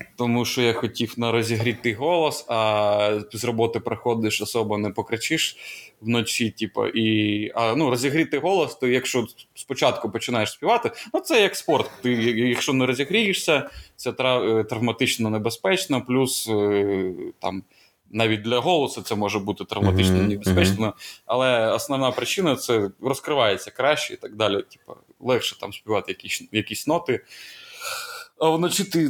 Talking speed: 140 wpm